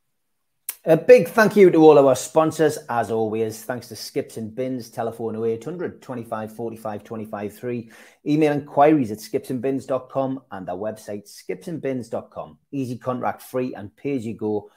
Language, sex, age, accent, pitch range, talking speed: English, male, 30-49, British, 110-150 Hz, 140 wpm